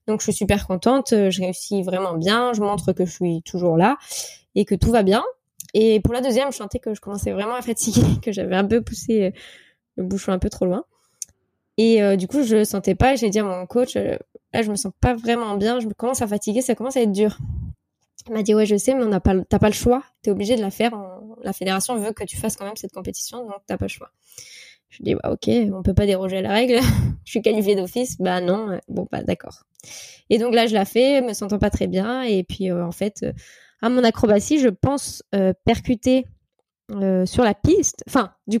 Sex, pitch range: female, 195-245 Hz